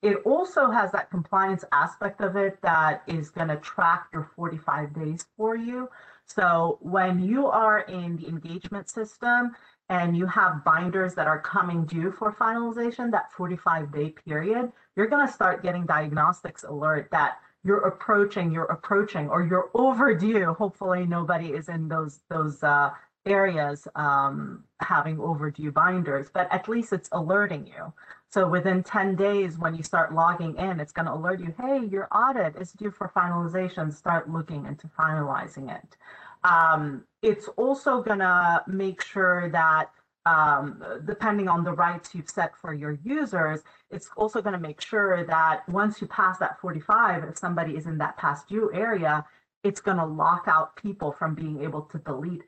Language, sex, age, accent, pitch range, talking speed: English, female, 40-59, American, 160-205 Hz, 170 wpm